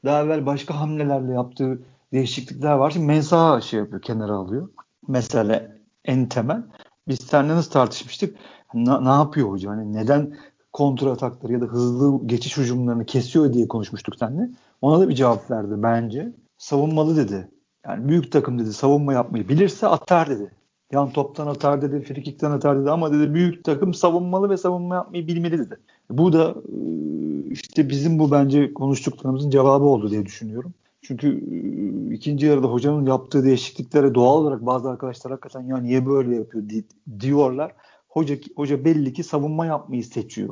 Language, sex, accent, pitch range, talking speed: Turkish, male, native, 130-160 Hz, 155 wpm